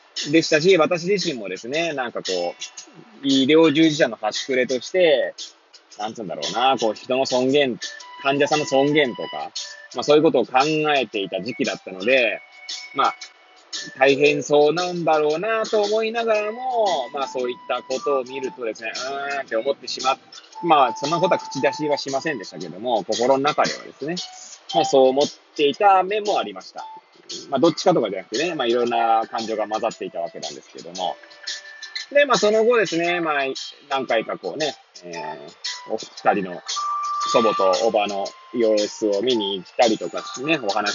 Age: 20-39